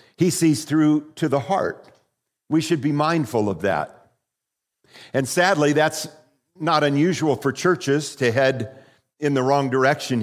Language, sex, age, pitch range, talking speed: English, male, 50-69, 110-145 Hz, 145 wpm